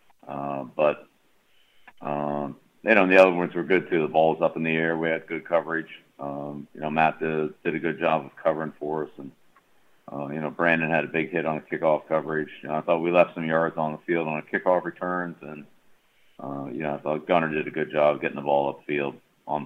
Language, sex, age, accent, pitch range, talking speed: English, male, 50-69, American, 75-80 Hz, 245 wpm